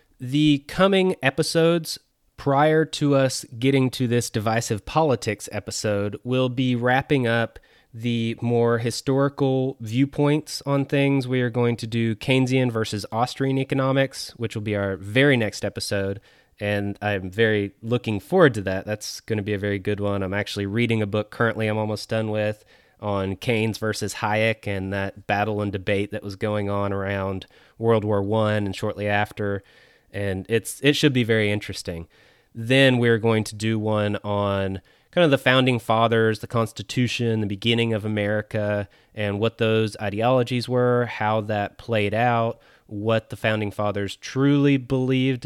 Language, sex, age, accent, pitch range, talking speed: English, male, 20-39, American, 105-125 Hz, 160 wpm